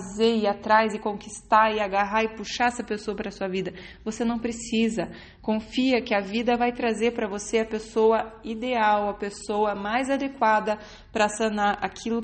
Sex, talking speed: female, 165 wpm